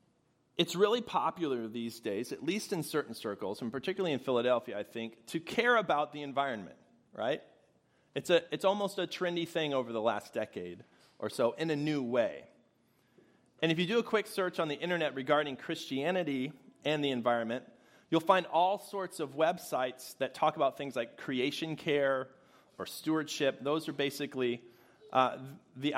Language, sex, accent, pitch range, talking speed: English, male, American, 130-170 Hz, 170 wpm